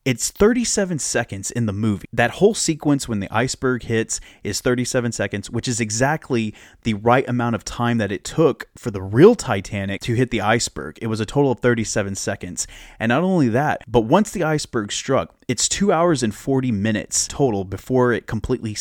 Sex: male